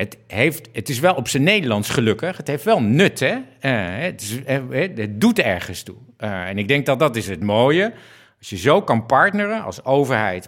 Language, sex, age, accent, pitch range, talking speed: Dutch, male, 50-69, Dutch, 105-155 Hz, 190 wpm